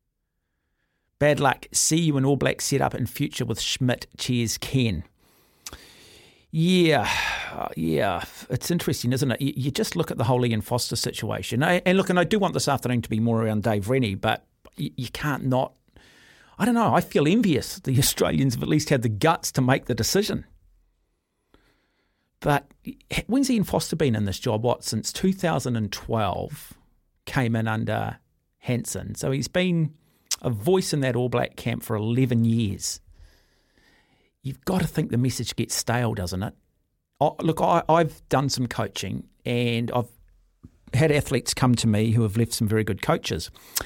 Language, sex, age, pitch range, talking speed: English, male, 40-59, 110-155 Hz, 170 wpm